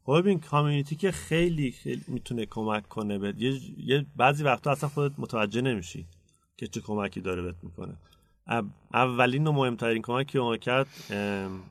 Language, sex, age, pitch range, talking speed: Persian, male, 30-49, 105-135 Hz, 165 wpm